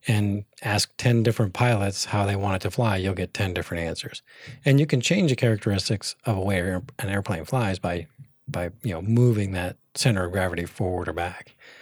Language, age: English, 40-59